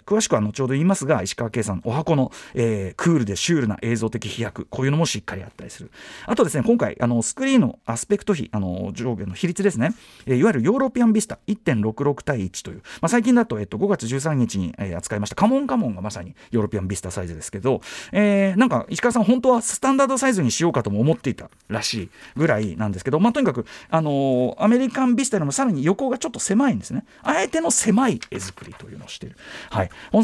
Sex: male